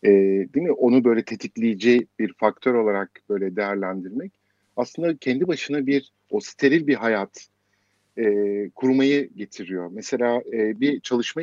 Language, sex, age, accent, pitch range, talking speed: Turkish, male, 50-69, native, 100-130 Hz, 135 wpm